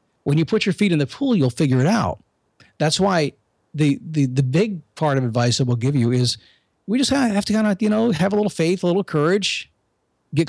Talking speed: 240 wpm